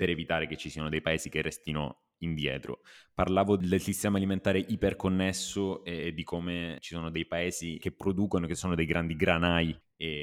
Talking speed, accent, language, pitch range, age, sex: 175 wpm, native, Italian, 80-90 Hz, 20-39, male